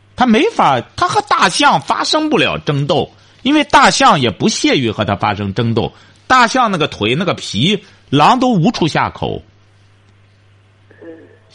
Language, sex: Chinese, male